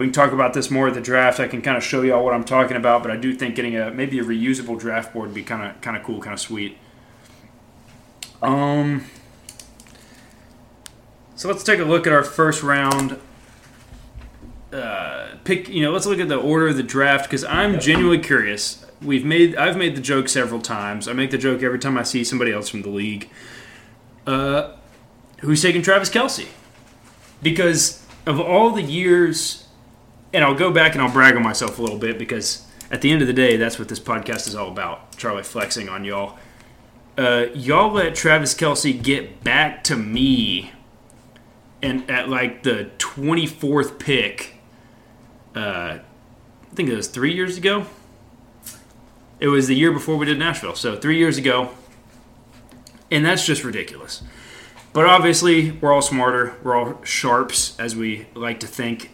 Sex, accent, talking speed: male, American, 180 wpm